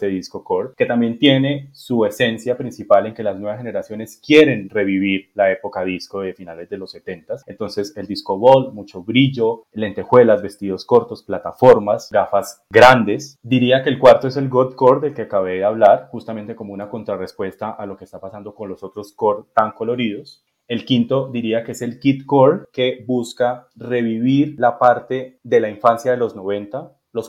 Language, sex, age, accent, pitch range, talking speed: Spanish, male, 20-39, Colombian, 105-130 Hz, 185 wpm